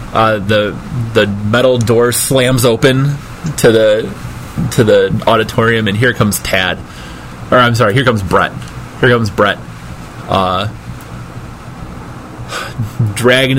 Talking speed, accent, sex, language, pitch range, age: 120 wpm, American, male, English, 90-120 Hz, 20-39